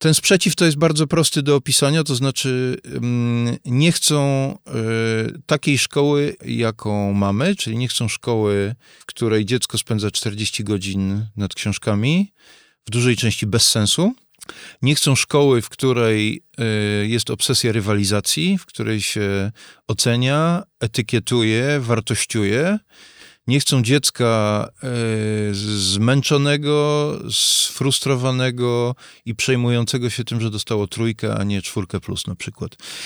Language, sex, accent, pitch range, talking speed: Polish, male, native, 110-140 Hz, 120 wpm